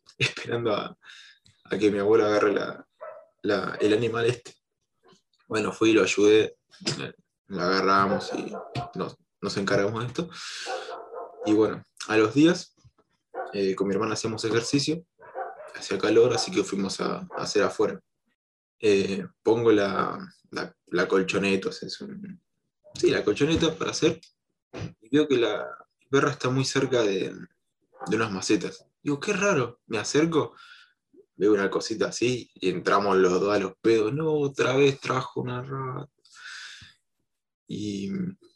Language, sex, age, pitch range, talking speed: Spanish, male, 20-39, 105-160 Hz, 150 wpm